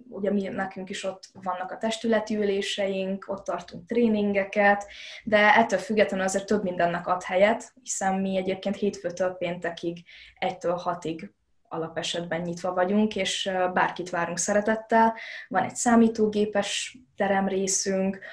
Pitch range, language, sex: 180-210 Hz, Hungarian, female